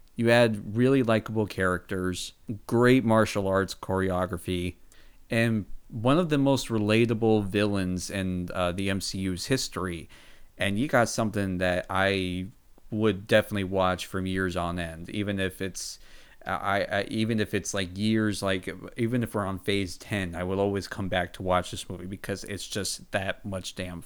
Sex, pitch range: male, 90-110 Hz